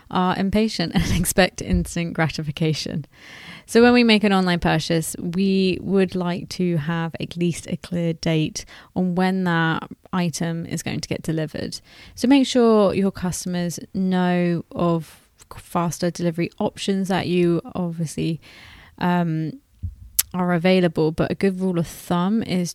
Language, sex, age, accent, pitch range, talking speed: English, female, 20-39, British, 170-195 Hz, 145 wpm